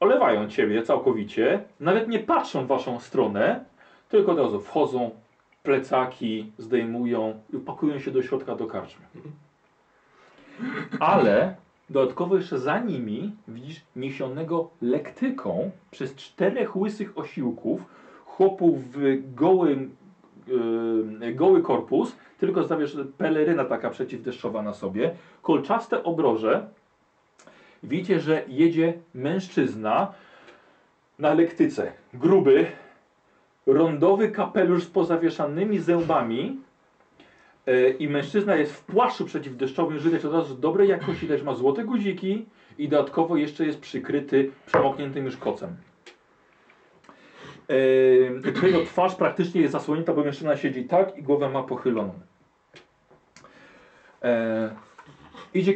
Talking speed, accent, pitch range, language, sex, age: 105 wpm, native, 135-185 Hz, Polish, male, 40-59